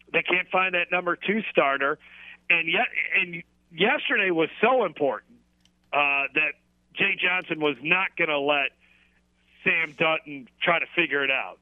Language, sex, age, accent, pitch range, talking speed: English, male, 40-59, American, 140-180 Hz, 155 wpm